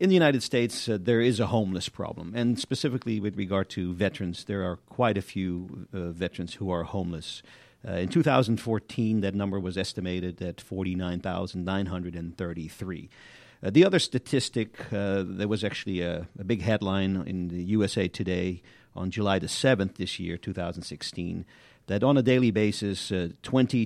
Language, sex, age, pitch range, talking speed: English, male, 50-69, 95-110 Hz, 160 wpm